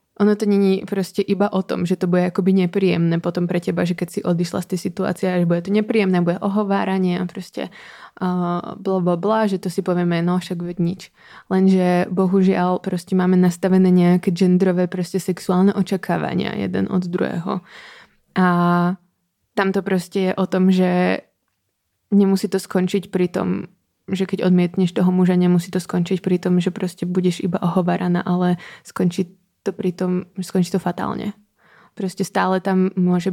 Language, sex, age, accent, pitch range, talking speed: Czech, female, 20-39, native, 175-190 Hz, 165 wpm